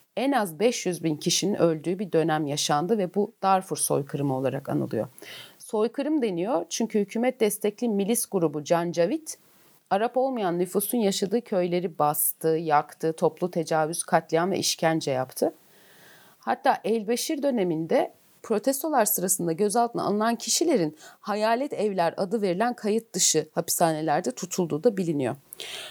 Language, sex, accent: Turkish, female, native